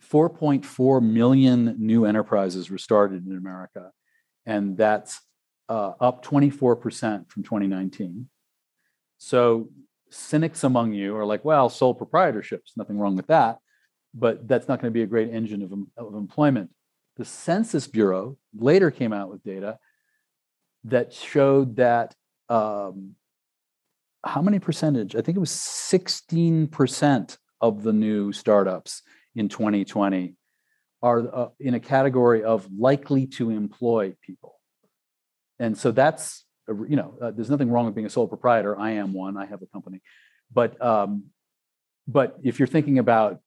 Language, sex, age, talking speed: English, male, 40-59, 140 wpm